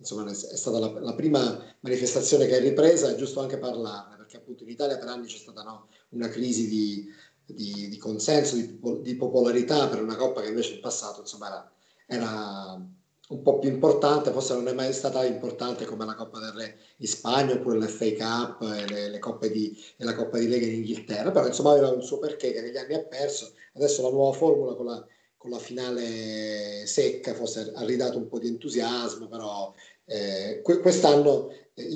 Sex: male